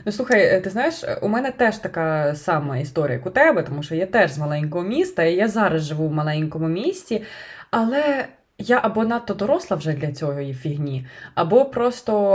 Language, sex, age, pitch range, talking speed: Ukrainian, female, 20-39, 155-220 Hz, 185 wpm